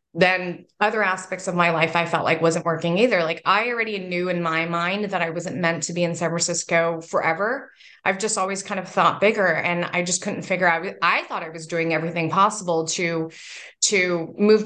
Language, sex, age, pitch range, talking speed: English, female, 20-39, 175-210 Hz, 220 wpm